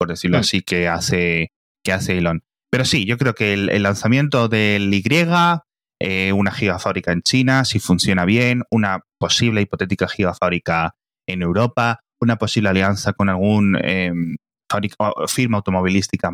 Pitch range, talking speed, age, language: 95-115 Hz, 150 wpm, 20-39, Spanish